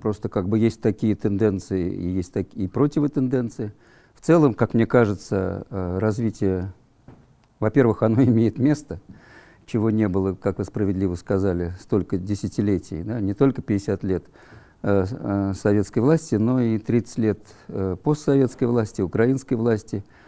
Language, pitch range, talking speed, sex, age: Russian, 95-115 Hz, 130 wpm, male, 50-69